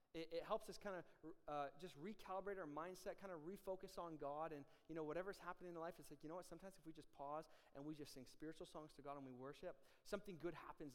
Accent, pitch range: American, 140-170 Hz